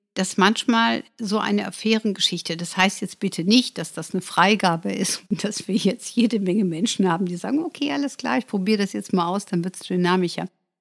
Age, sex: 60-79, female